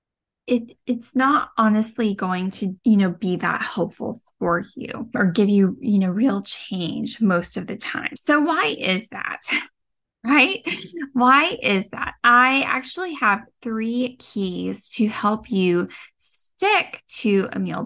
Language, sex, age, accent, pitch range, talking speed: English, female, 10-29, American, 200-275 Hz, 150 wpm